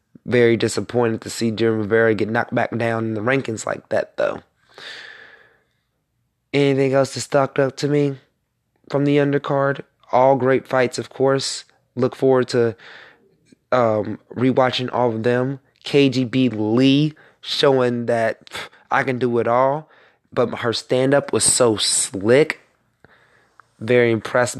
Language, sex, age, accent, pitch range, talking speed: English, male, 20-39, American, 115-130 Hz, 135 wpm